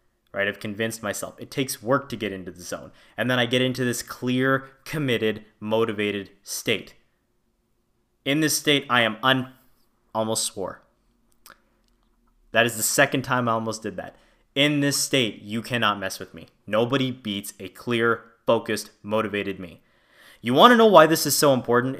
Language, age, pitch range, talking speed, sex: English, 20-39, 115-140 Hz, 170 wpm, male